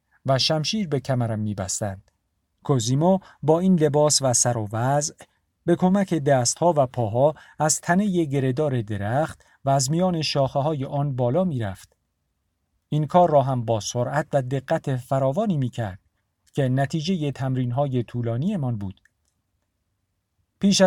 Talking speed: 150 wpm